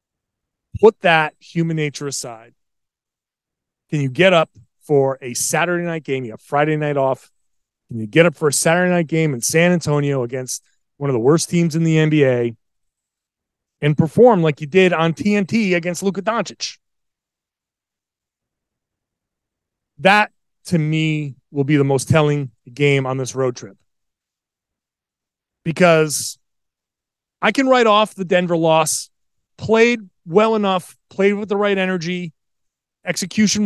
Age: 30-49